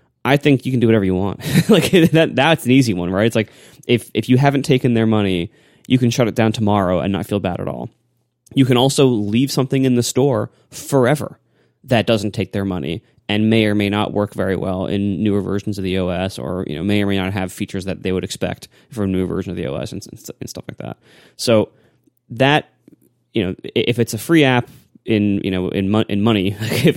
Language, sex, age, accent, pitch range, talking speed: English, male, 20-39, American, 100-130 Hz, 240 wpm